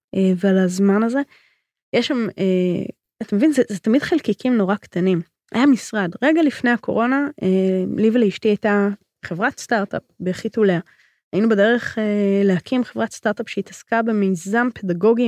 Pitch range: 190-240 Hz